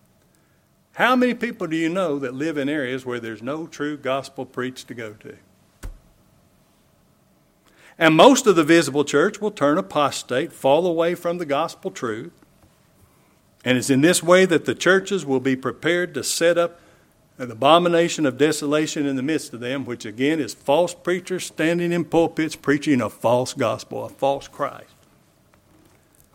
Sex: male